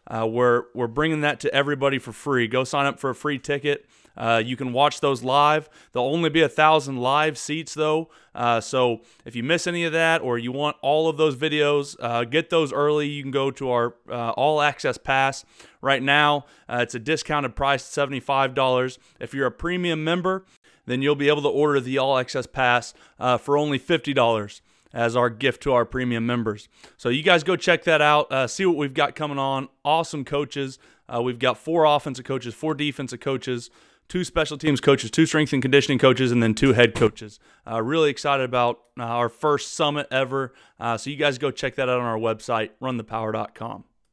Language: English